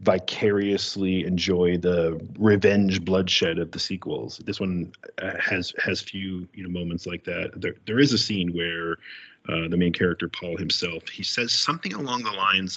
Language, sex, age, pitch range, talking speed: English, male, 30-49, 85-105 Hz, 170 wpm